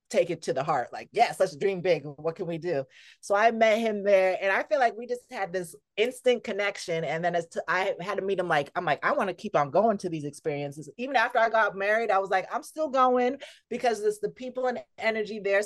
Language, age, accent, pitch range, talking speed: English, 30-49, American, 180-245 Hz, 255 wpm